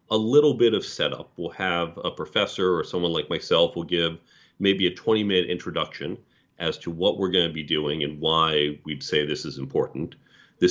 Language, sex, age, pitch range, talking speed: English, male, 40-59, 85-100 Hz, 195 wpm